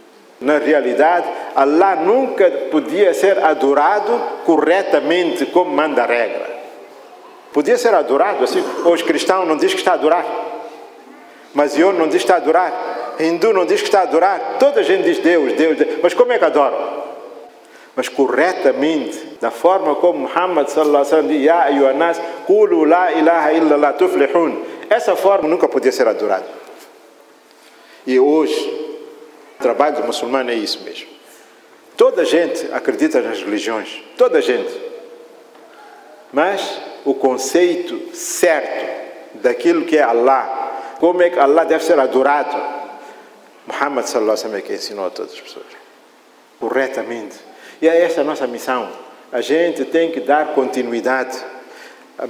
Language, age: Portuguese, 50-69